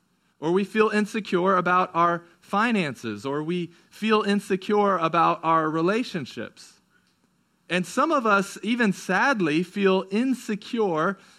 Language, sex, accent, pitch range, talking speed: English, male, American, 170-215 Hz, 115 wpm